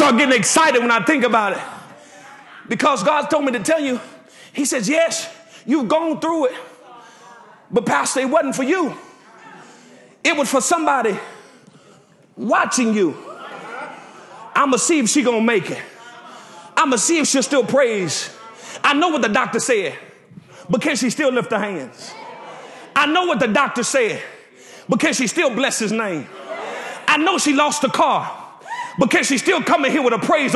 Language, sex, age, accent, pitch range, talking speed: English, male, 30-49, American, 260-360 Hz, 175 wpm